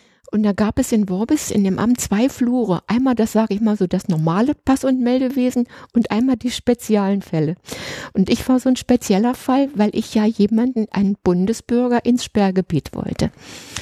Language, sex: German, female